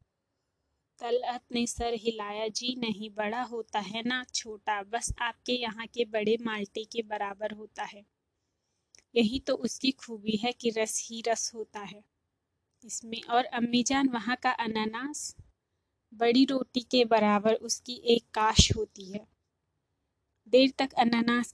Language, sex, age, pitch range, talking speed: Hindi, female, 20-39, 215-245 Hz, 140 wpm